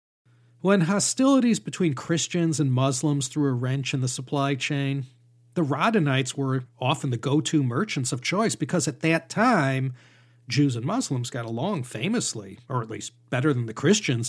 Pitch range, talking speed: 125-155 Hz, 165 wpm